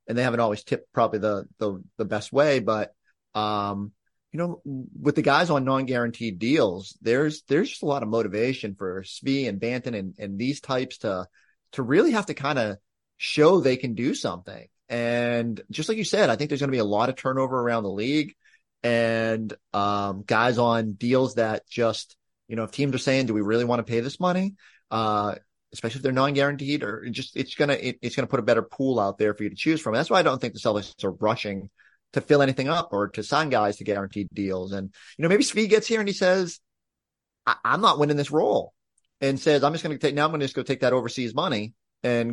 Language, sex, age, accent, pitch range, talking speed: English, male, 30-49, American, 110-140 Hz, 230 wpm